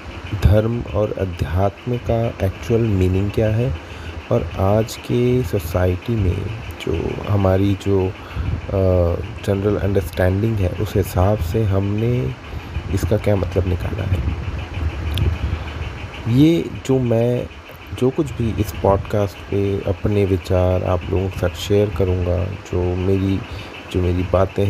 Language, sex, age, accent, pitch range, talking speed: Hindi, male, 30-49, native, 90-110 Hz, 120 wpm